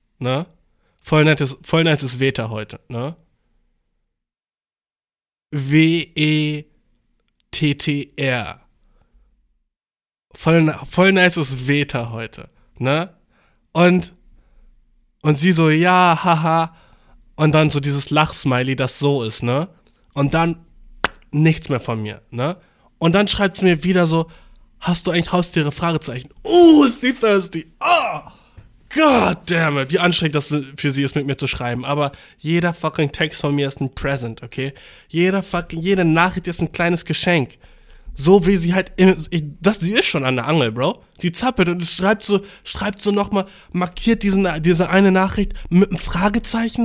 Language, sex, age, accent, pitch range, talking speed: German, male, 20-39, German, 145-195 Hz, 145 wpm